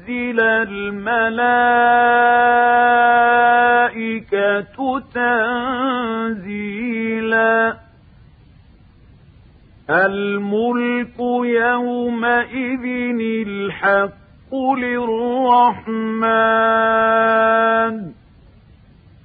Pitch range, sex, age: 195-235 Hz, male, 40-59